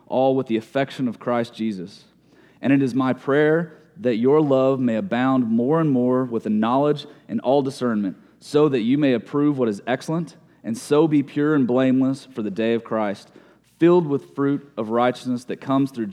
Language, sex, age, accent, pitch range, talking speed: English, male, 30-49, American, 125-150 Hz, 195 wpm